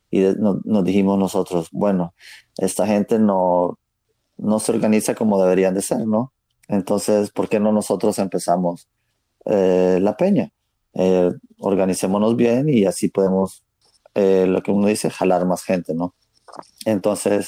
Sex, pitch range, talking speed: male, 95-110 Hz, 140 wpm